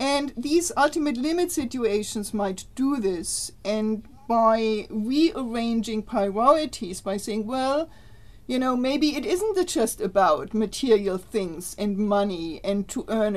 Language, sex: English, female